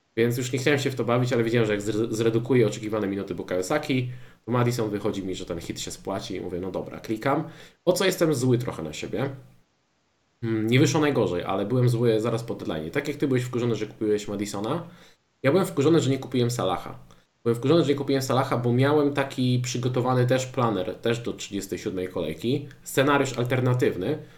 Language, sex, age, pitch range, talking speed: Polish, male, 20-39, 110-135 Hz, 200 wpm